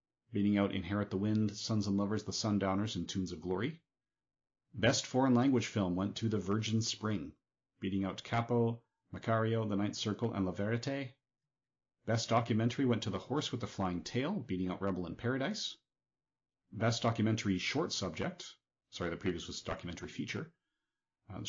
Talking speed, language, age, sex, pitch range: 165 wpm, English, 40-59, male, 100-125 Hz